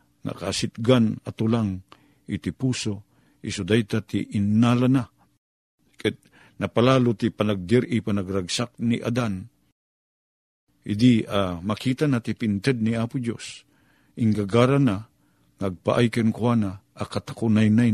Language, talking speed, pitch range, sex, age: Filipino, 95 wpm, 100-120 Hz, male, 50-69